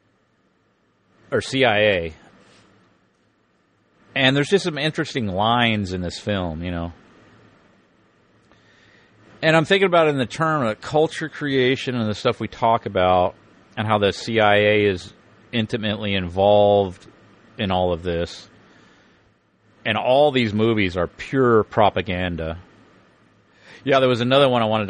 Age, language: 40-59, English